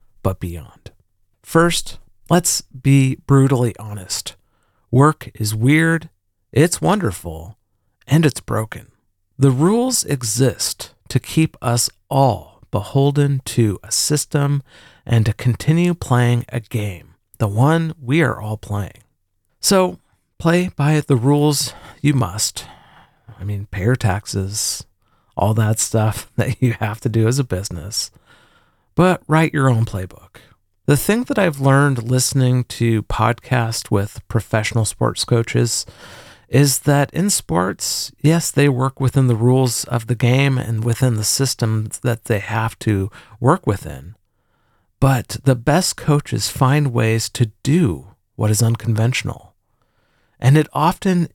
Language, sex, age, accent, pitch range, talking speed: English, male, 40-59, American, 105-140 Hz, 135 wpm